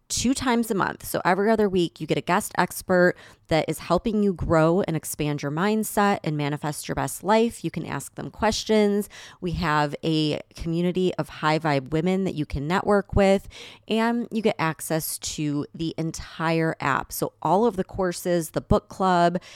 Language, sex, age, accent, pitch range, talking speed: English, female, 30-49, American, 155-200 Hz, 185 wpm